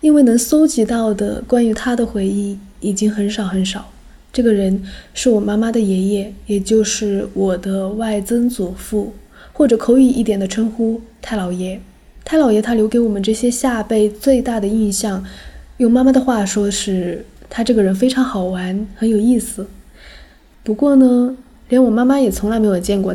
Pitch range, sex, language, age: 200-245 Hz, female, Chinese, 20-39